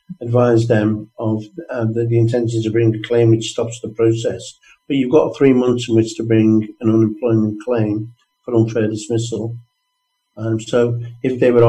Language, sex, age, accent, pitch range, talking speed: English, male, 60-79, British, 115-130 Hz, 180 wpm